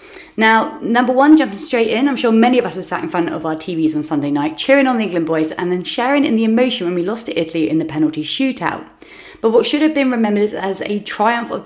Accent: British